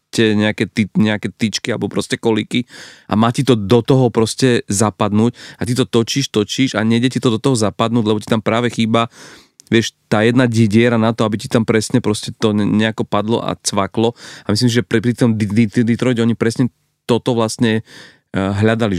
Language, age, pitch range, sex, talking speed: Slovak, 40-59, 105-120 Hz, male, 195 wpm